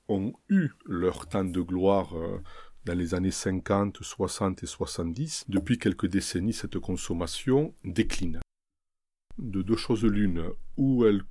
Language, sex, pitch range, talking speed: French, male, 90-115 Hz, 135 wpm